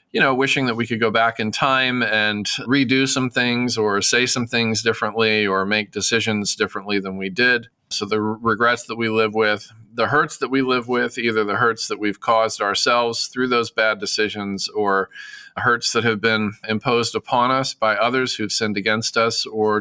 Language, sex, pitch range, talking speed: English, male, 105-120 Hz, 195 wpm